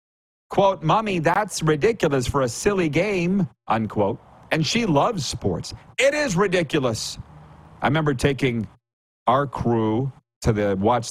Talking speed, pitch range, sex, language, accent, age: 130 wpm, 110-160 Hz, male, English, American, 40-59